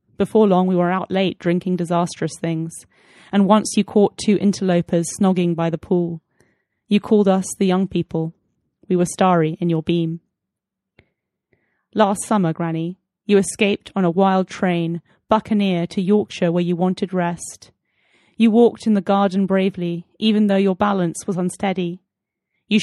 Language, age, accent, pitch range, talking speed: English, 30-49, British, 175-205 Hz, 160 wpm